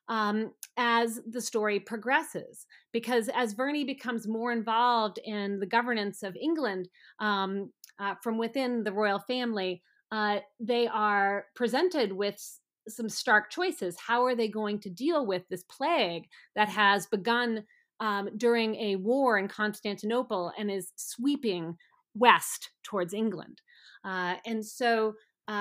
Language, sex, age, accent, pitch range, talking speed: English, female, 30-49, American, 205-245 Hz, 140 wpm